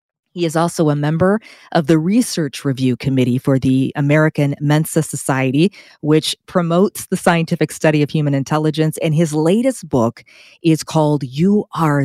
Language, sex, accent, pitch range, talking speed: English, female, American, 130-160 Hz, 155 wpm